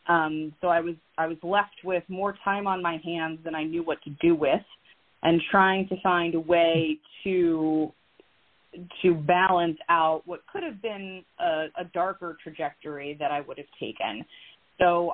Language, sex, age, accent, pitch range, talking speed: English, female, 30-49, American, 160-180 Hz, 175 wpm